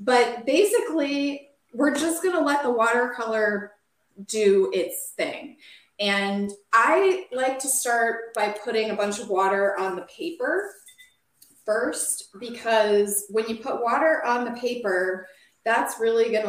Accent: American